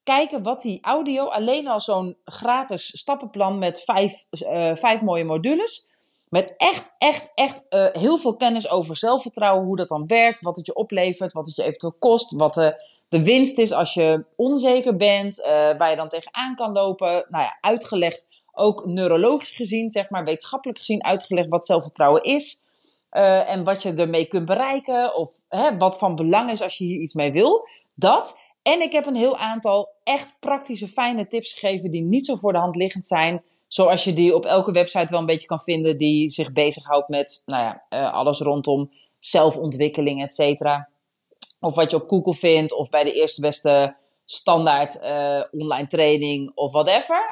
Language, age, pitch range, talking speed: Dutch, 40-59, 160-230 Hz, 180 wpm